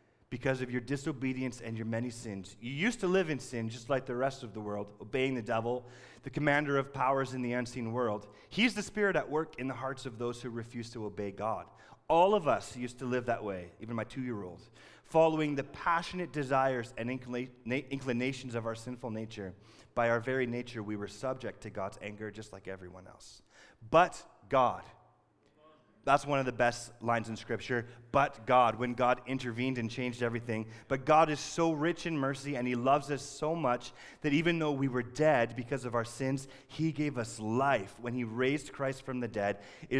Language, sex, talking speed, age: Dutch, male, 205 wpm, 30-49